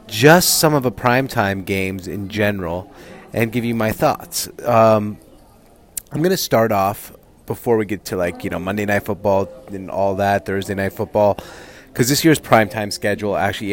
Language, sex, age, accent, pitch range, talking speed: English, male, 30-49, American, 100-120 Hz, 180 wpm